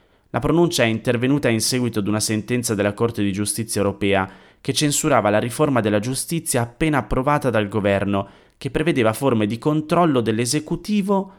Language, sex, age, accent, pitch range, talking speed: Italian, male, 30-49, native, 95-120 Hz, 160 wpm